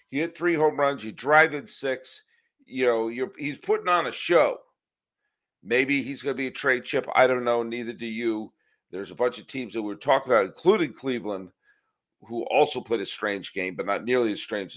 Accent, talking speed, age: American, 210 wpm, 50-69